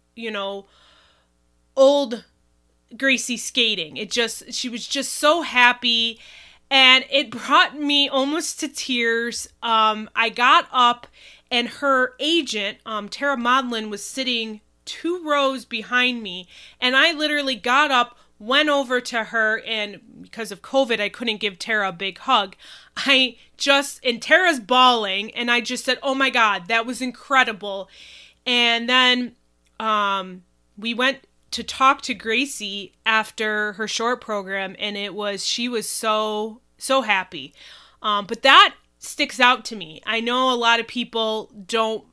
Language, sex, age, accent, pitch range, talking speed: English, female, 20-39, American, 210-265 Hz, 150 wpm